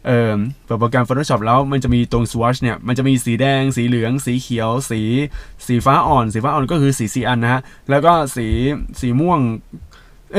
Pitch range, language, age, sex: 120-150 Hz, Thai, 20-39, male